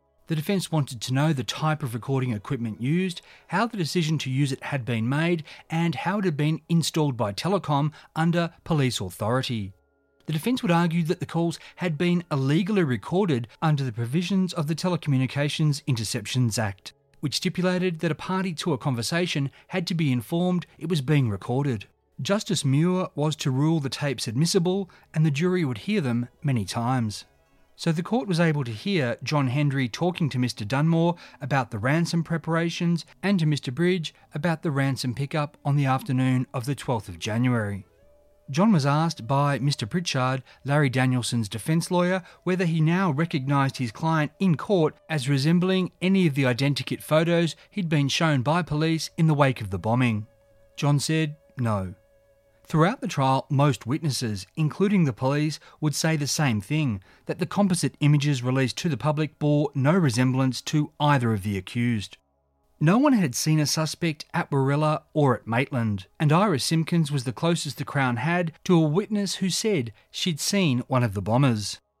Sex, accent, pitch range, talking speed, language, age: male, Australian, 130-170 Hz, 180 wpm, English, 30-49